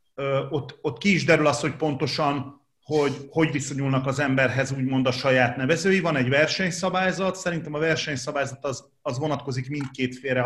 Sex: male